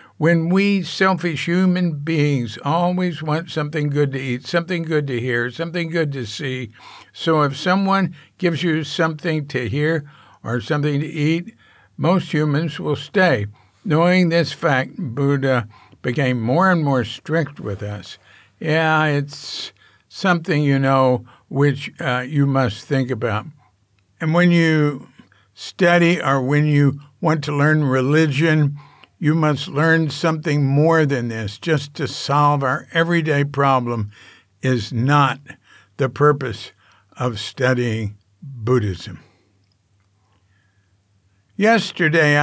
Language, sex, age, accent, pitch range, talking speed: English, male, 60-79, American, 125-160 Hz, 125 wpm